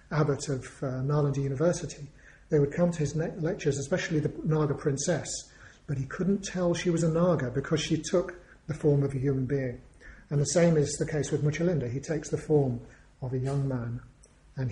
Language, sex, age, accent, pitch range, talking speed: English, male, 40-59, British, 140-165 Hz, 200 wpm